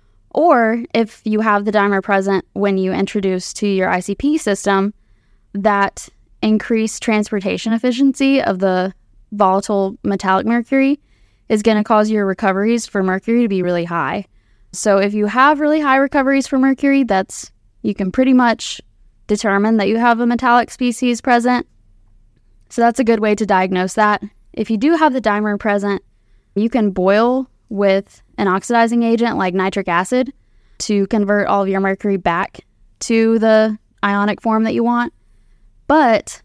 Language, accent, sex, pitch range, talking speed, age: English, American, female, 190-235 Hz, 160 wpm, 10-29